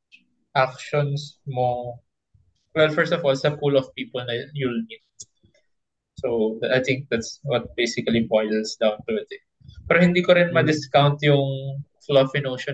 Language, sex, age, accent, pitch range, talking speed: Filipino, male, 20-39, native, 115-145 Hz, 155 wpm